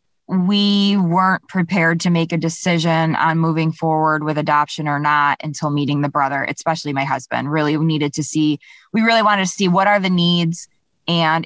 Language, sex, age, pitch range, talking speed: English, female, 20-39, 160-185 Hz, 185 wpm